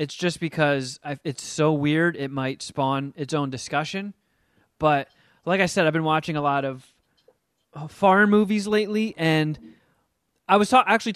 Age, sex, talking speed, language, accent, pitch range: 20-39, male, 155 wpm, English, American, 135-170 Hz